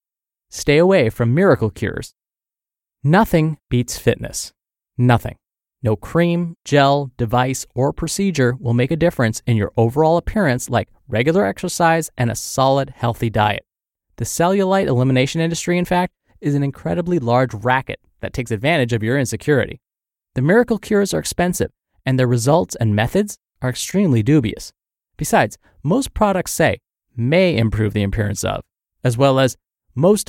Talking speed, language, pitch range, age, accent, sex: 145 wpm, English, 120-170 Hz, 20-39, American, male